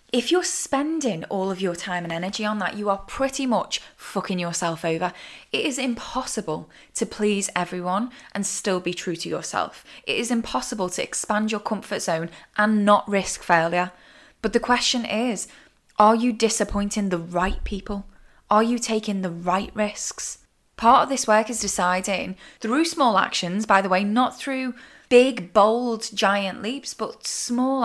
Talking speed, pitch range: 170 wpm, 190-240 Hz